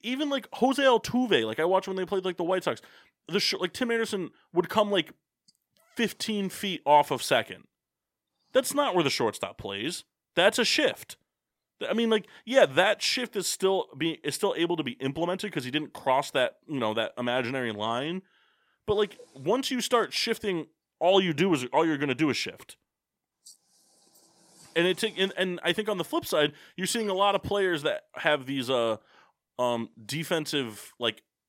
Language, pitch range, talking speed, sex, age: English, 140-220 Hz, 195 wpm, male, 30-49